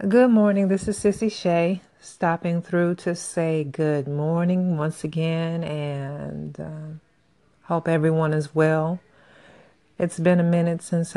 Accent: American